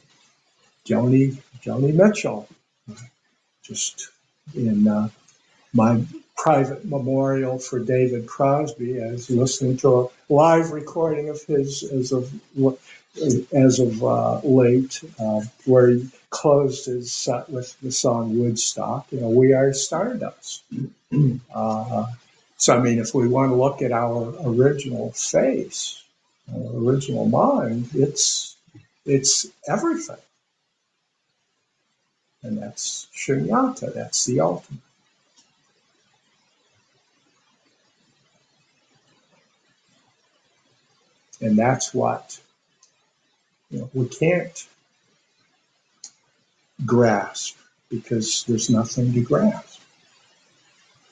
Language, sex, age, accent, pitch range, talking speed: English, male, 60-79, American, 120-140 Hz, 85 wpm